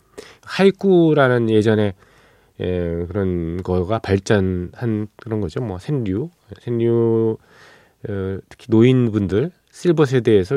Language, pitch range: Korean, 90-120 Hz